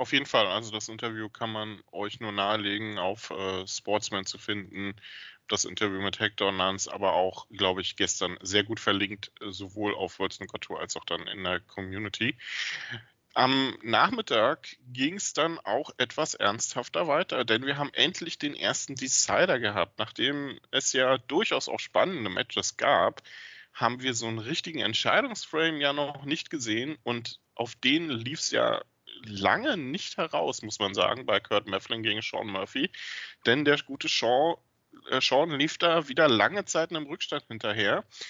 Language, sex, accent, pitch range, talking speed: German, male, German, 105-140 Hz, 165 wpm